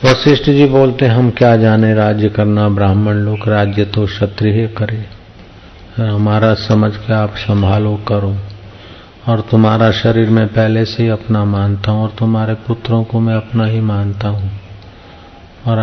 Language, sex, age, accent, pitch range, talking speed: Hindi, male, 50-69, native, 100-110 Hz, 150 wpm